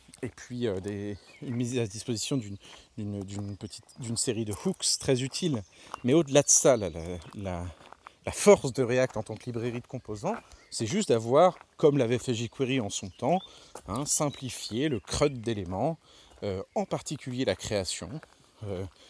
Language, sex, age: French, male, 40-59